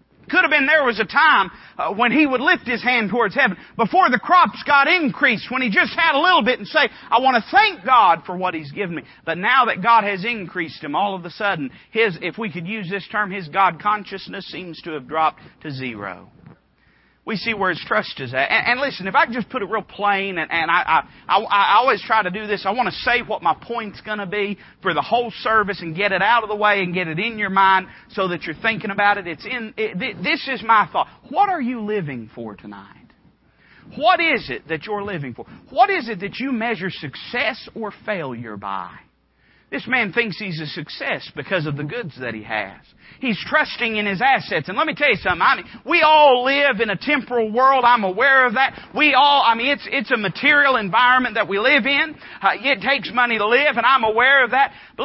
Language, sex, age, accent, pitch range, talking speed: English, male, 40-59, American, 180-255 Hz, 240 wpm